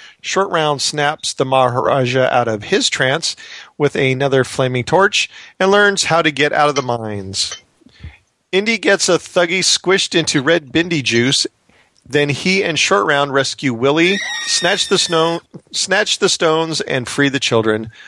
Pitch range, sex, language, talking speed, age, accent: 130-165 Hz, male, English, 160 wpm, 40-59, American